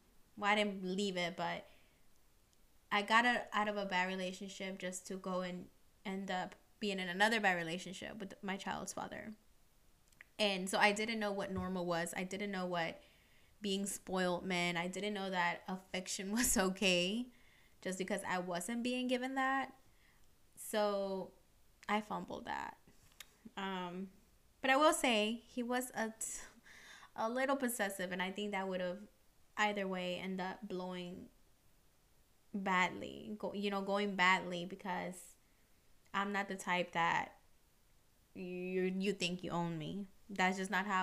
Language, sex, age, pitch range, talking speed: English, female, 20-39, 180-210 Hz, 155 wpm